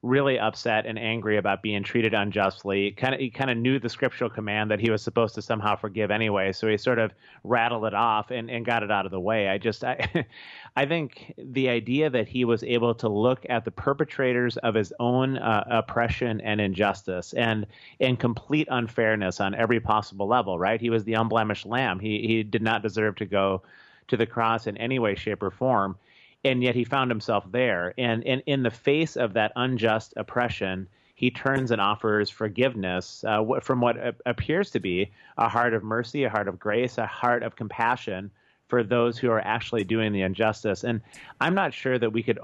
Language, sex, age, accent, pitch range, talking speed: English, male, 30-49, American, 105-125 Hz, 200 wpm